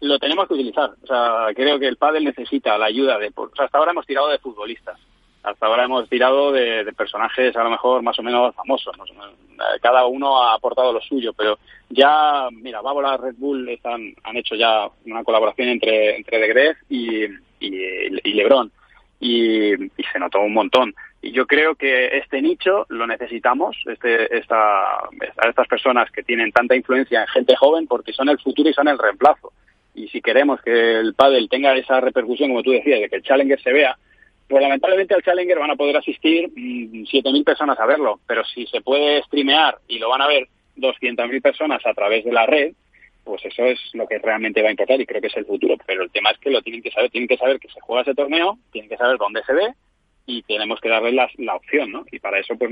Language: Spanish